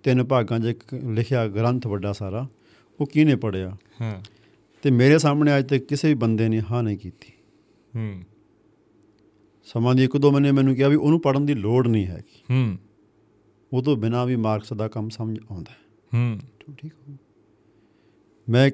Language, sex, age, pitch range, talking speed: Punjabi, male, 50-69, 110-140 Hz, 165 wpm